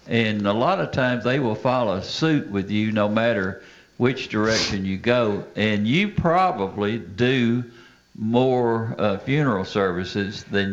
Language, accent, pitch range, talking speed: English, American, 100-125 Hz, 145 wpm